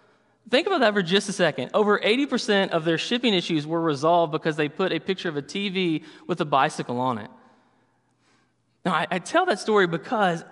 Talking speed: 200 wpm